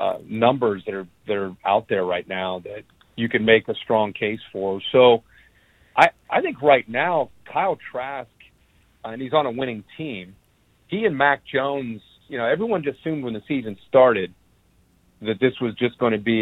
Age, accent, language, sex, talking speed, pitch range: 50-69, American, English, male, 195 wpm, 95-125 Hz